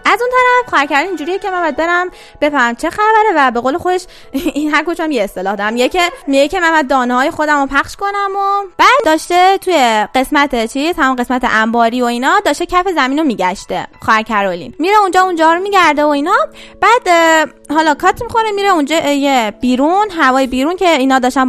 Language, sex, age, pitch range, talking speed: Persian, female, 10-29, 235-355 Hz, 185 wpm